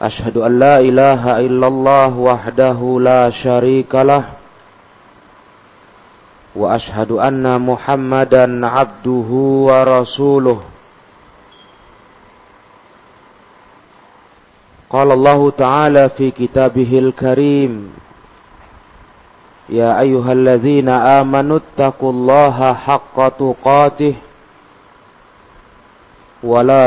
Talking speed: 65 wpm